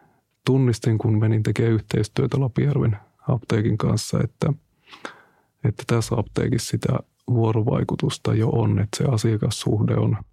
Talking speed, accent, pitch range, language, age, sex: 115 wpm, native, 110-135 Hz, Finnish, 30-49, male